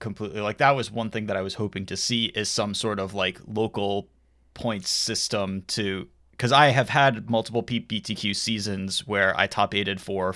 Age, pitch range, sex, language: 20-39, 95-115 Hz, male, English